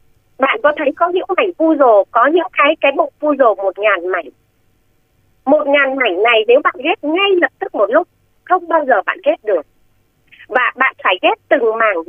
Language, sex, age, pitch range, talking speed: Vietnamese, female, 30-49, 275-370 Hz, 210 wpm